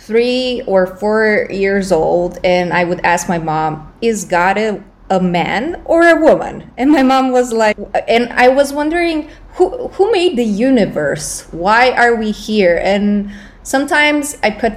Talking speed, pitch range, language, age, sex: 165 wpm, 175-220 Hz, English, 20-39, female